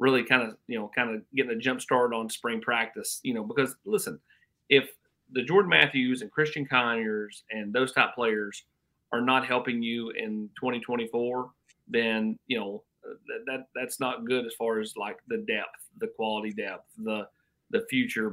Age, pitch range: 40-59, 115-150 Hz